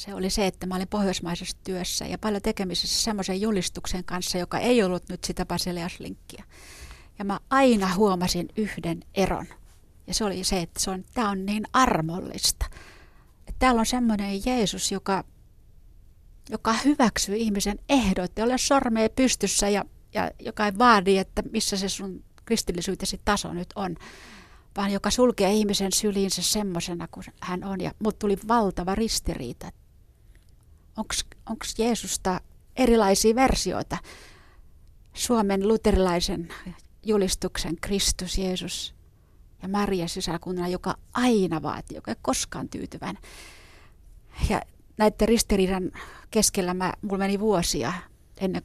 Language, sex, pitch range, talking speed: Finnish, female, 175-210 Hz, 125 wpm